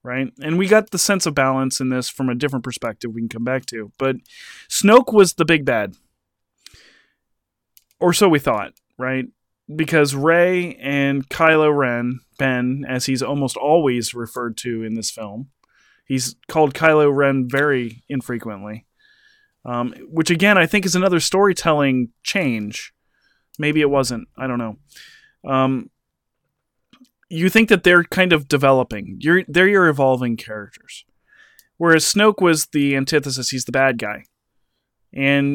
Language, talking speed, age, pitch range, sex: English, 150 wpm, 20-39, 130-175 Hz, male